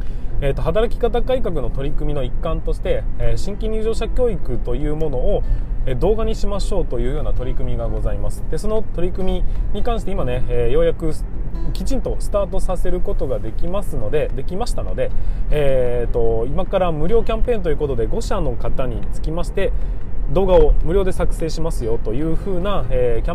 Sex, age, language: male, 20-39, Japanese